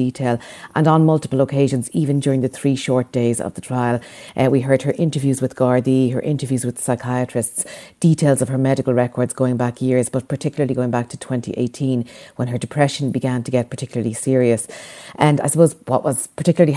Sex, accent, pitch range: female, Irish, 125-150 Hz